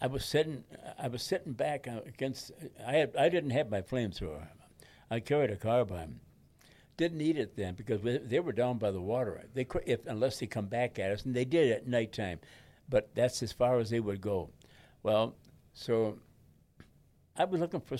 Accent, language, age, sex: American, English, 60-79, male